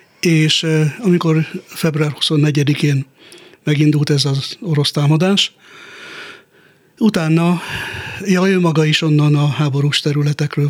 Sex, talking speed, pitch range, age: male, 95 wpm, 145-170 Hz, 60-79